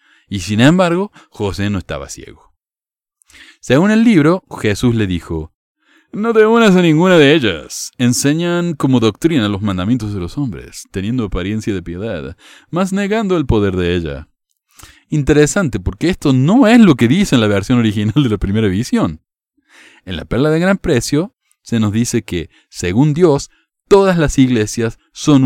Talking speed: 165 wpm